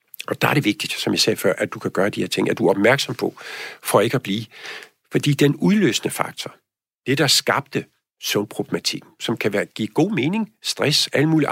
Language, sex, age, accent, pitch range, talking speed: Danish, male, 50-69, native, 120-155 Hz, 215 wpm